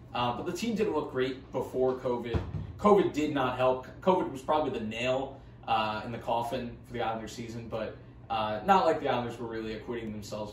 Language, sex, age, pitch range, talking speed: English, male, 20-39, 120-155 Hz, 205 wpm